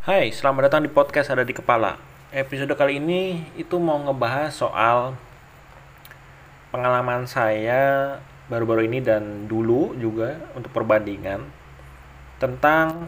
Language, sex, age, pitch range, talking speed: Malay, male, 20-39, 115-140 Hz, 115 wpm